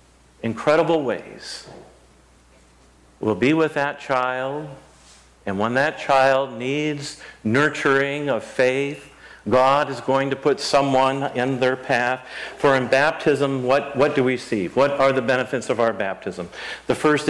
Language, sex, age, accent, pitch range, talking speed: English, male, 50-69, American, 105-135 Hz, 140 wpm